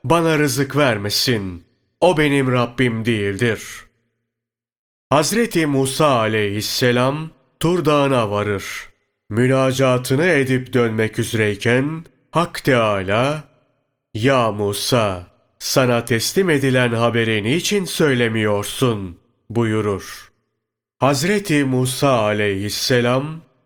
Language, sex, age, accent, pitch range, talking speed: Turkish, male, 40-59, native, 110-135 Hz, 75 wpm